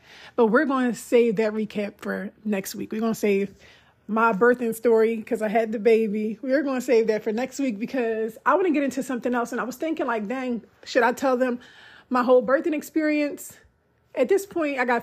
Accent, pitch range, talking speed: American, 205-245 Hz, 230 wpm